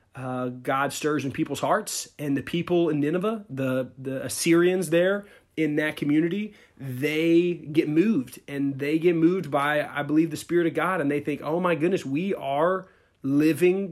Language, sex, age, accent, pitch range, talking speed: English, male, 30-49, American, 135-170 Hz, 175 wpm